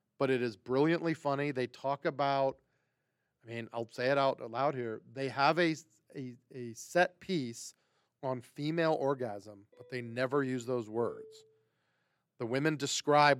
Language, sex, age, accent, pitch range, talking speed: English, male, 40-59, American, 130-170 Hz, 155 wpm